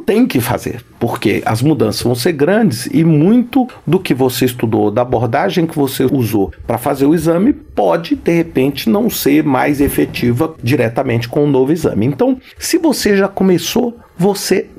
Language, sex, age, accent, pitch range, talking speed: Portuguese, male, 50-69, Brazilian, 120-185 Hz, 170 wpm